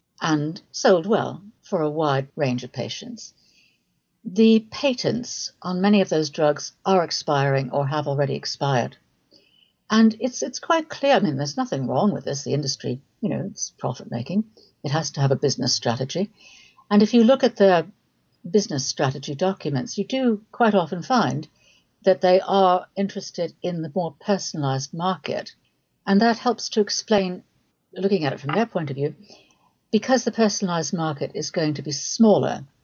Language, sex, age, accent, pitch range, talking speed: English, female, 60-79, British, 140-205 Hz, 170 wpm